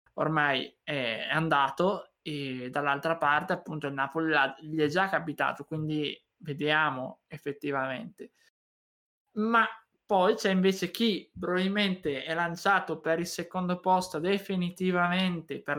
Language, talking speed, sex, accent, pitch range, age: Italian, 115 wpm, male, native, 155-190 Hz, 20-39